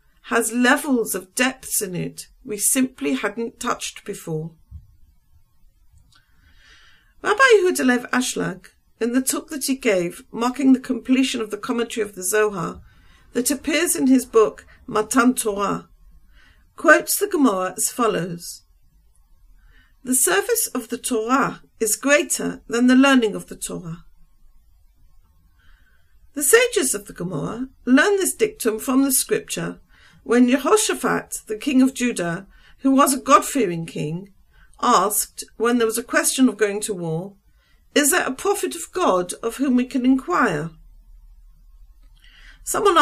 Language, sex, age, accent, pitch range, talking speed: English, female, 50-69, British, 210-275 Hz, 135 wpm